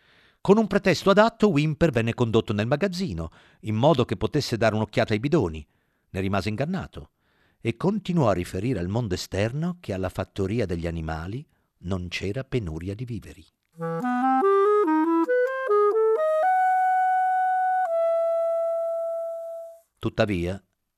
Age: 50-69